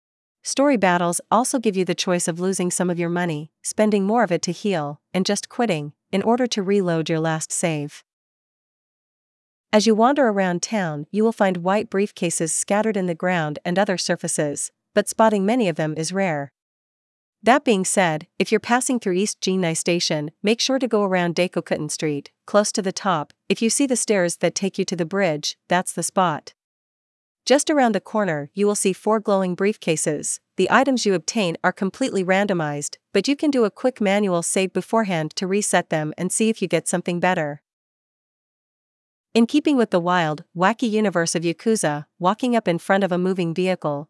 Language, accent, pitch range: English, American, 170-210 Hz